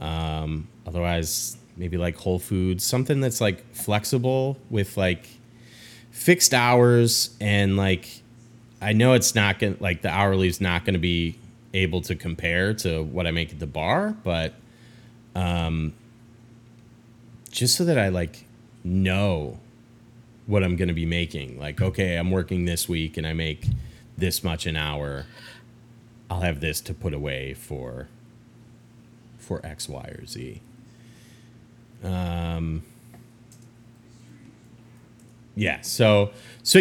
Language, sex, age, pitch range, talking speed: English, male, 30-49, 90-120 Hz, 125 wpm